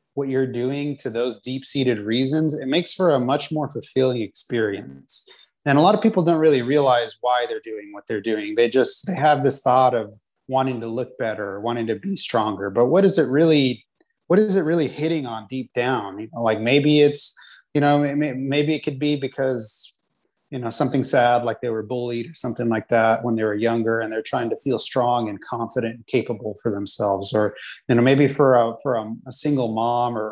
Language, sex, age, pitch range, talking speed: English, male, 30-49, 115-145 Hz, 220 wpm